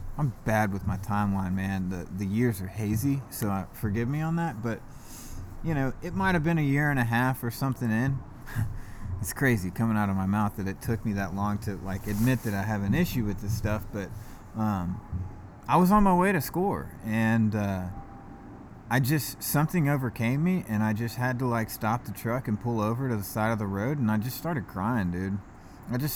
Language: English